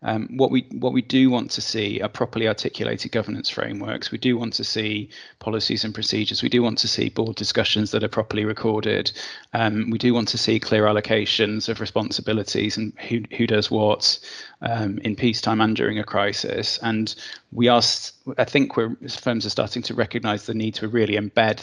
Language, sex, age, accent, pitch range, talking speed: English, male, 20-39, British, 105-115 Hz, 195 wpm